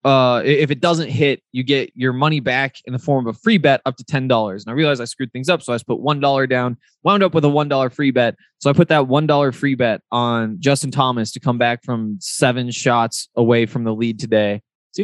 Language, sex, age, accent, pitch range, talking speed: English, male, 20-39, American, 125-150 Hz, 245 wpm